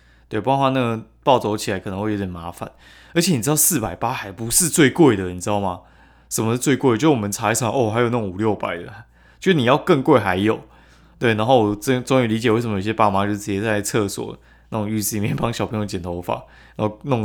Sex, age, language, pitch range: male, 20-39, Chinese, 90-125 Hz